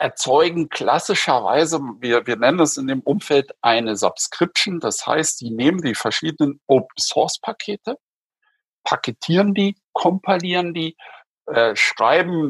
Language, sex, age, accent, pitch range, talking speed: German, male, 50-69, German, 125-165 Hz, 115 wpm